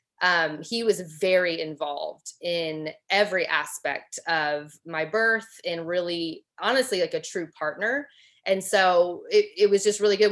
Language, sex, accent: English, female, American